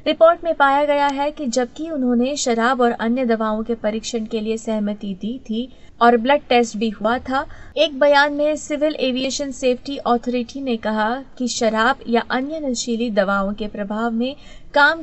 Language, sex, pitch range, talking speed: Hindi, female, 225-280 Hz, 175 wpm